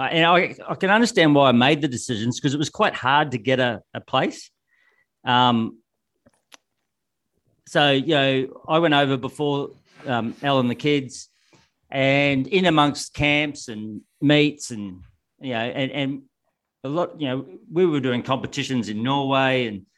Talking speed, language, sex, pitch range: 170 wpm, English, male, 115-145 Hz